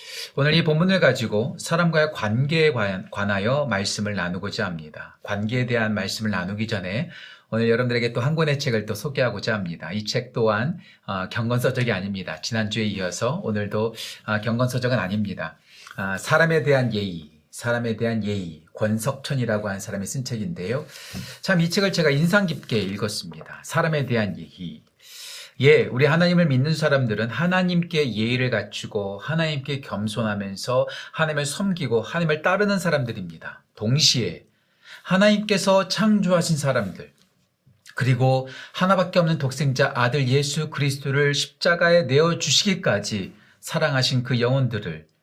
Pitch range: 110-160 Hz